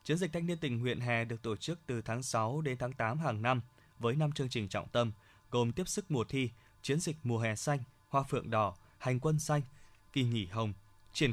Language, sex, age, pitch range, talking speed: Vietnamese, male, 20-39, 115-140 Hz, 235 wpm